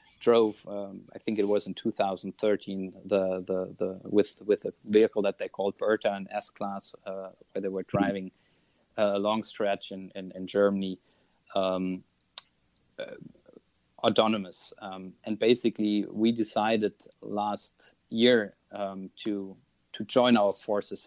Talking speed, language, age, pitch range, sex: 155 wpm, English, 30-49, 95-110 Hz, male